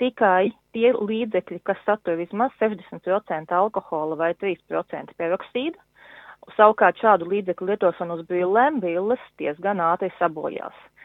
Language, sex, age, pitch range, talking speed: English, female, 30-49, 175-220 Hz, 115 wpm